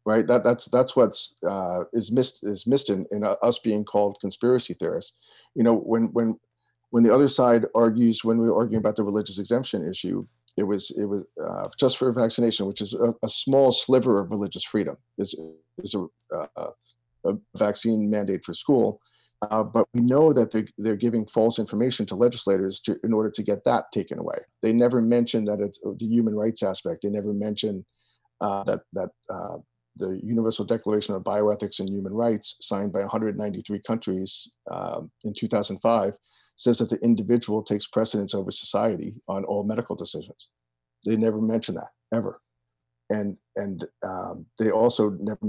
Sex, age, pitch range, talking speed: male, 50-69, 100-115 Hz, 180 wpm